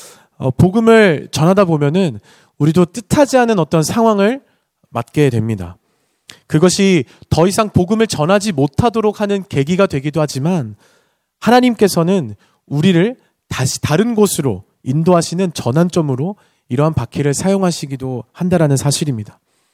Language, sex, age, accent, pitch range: Korean, male, 40-59, native, 145-200 Hz